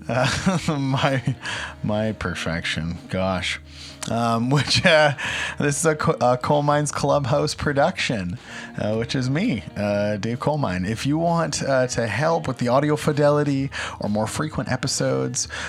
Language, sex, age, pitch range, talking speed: English, male, 30-49, 115-150 Hz, 145 wpm